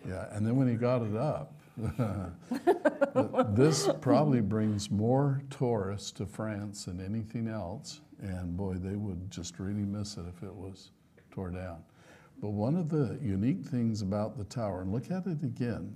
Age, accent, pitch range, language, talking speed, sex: 60-79, American, 95-125 Hz, English, 170 wpm, male